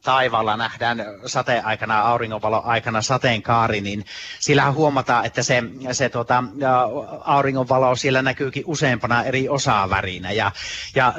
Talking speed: 120 wpm